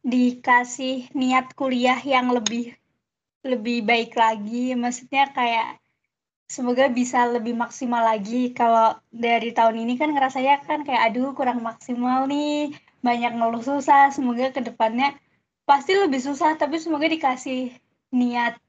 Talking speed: 130 wpm